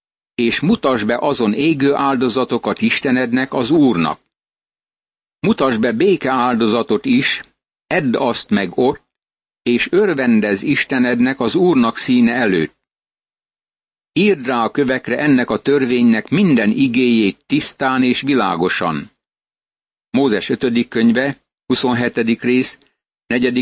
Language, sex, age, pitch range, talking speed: Hungarian, male, 60-79, 115-135 Hz, 110 wpm